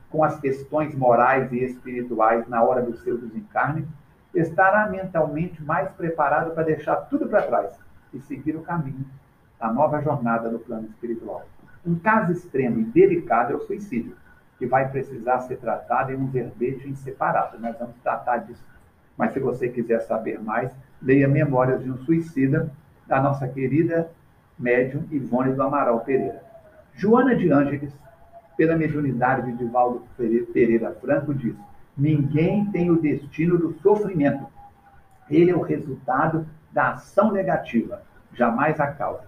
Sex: male